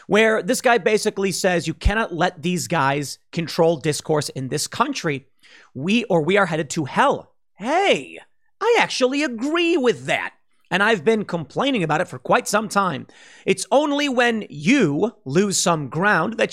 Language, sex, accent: English, male, American